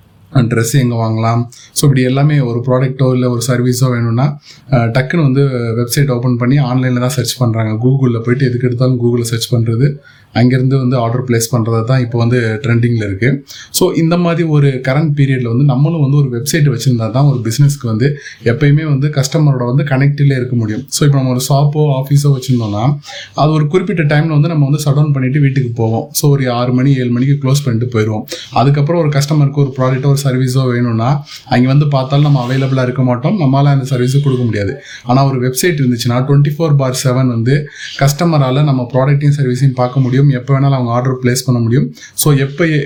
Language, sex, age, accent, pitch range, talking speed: Tamil, male, 20-39, native, 125-145 Hz, 180 wpm